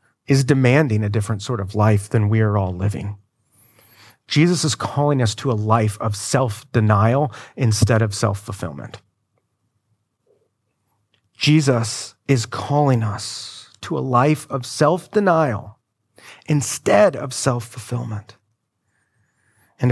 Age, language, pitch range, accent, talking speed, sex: 30-49, English, 110-140 Hz, American, 110 wpm, male